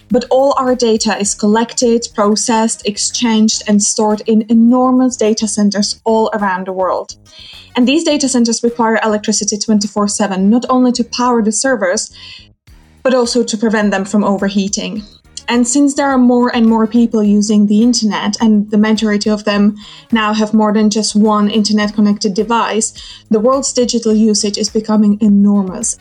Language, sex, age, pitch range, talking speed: English, female, 20-39, 210-240 Hz, 160 wpm